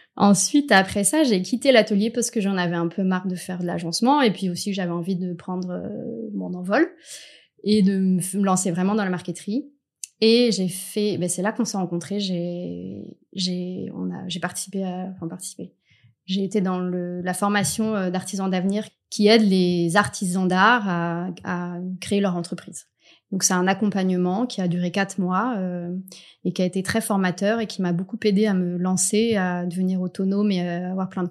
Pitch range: 180-210 Hz